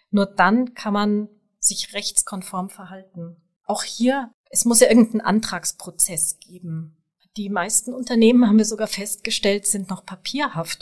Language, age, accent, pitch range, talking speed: German, 30-49, German, 185-230 Hz, 140 wpm